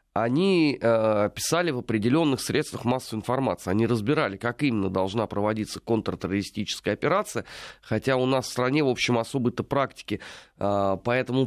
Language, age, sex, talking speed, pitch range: Russian, 30-49, male, 135 wpm, 115-150 Hz